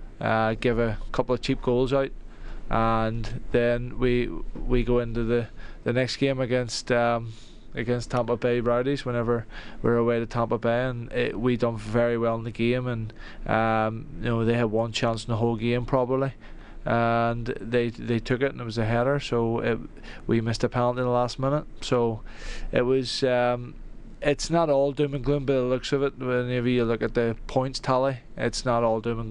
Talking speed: 205 wpm